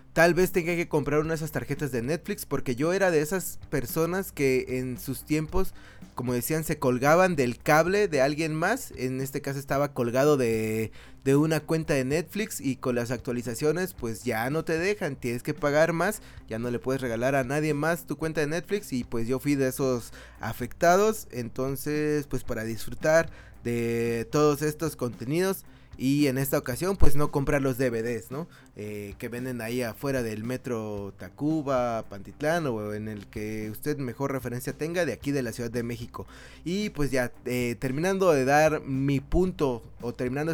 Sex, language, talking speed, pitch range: male, Spanish, 185 wpm, 120-160 Hz